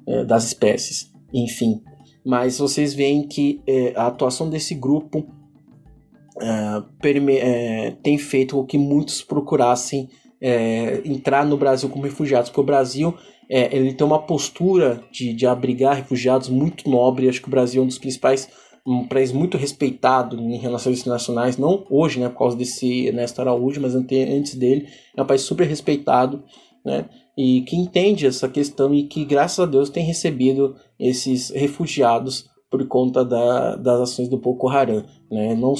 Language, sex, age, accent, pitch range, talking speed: Portuguese, male, 20-39, Brazilian, 125-145 Hz, 160 wpm